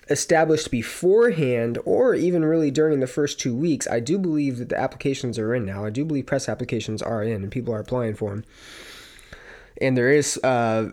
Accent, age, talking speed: American, 20-39, 200 wpm